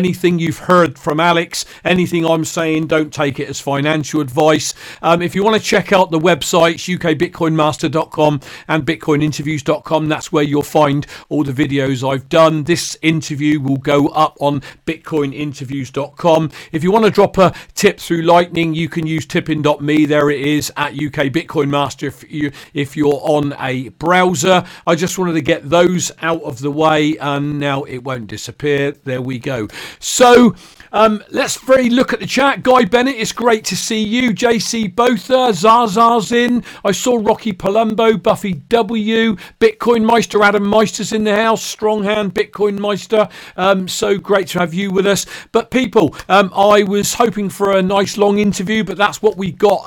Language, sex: English, male